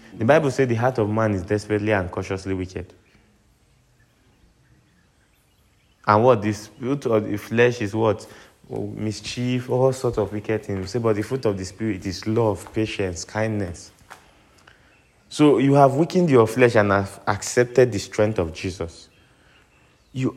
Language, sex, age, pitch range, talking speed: English, male, 20-39, 100-125 Hz, 155 wpm